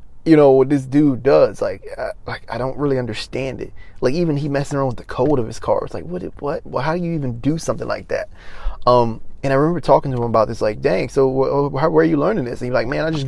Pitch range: 120-145 Hz